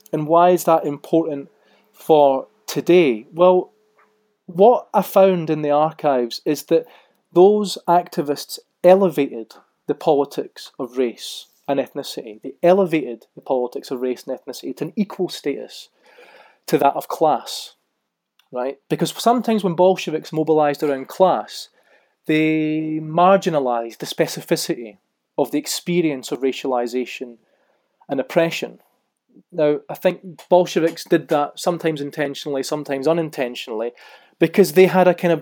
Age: 30-49